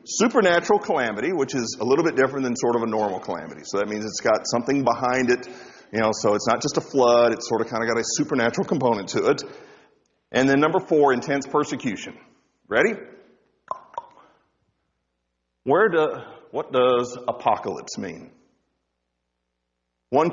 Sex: male